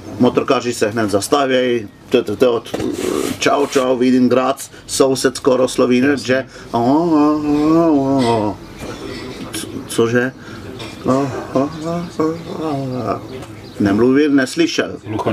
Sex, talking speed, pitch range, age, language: male, 65 wpm, 110-145 Hz, 50-69, Czech